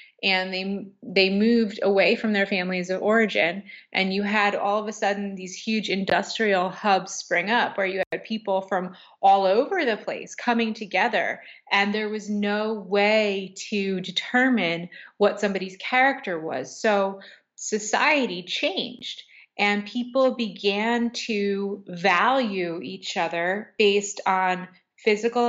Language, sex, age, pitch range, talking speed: English, female, 20-39, 185-215 Hz, 135 wpm